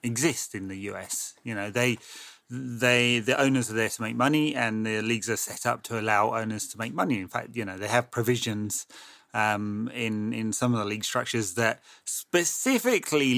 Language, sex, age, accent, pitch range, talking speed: English, male, 30-49, British, 105-125 Hz, 195 wpm